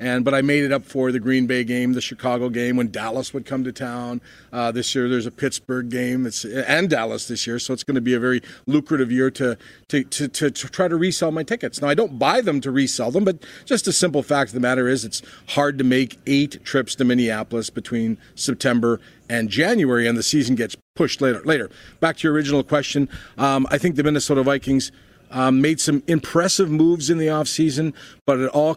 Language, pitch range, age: English, 120-145 Hz, 40-59